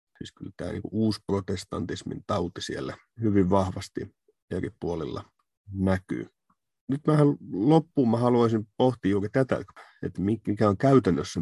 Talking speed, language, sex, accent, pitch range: 125 wpm, Finnish, male, native, 95-115 Hz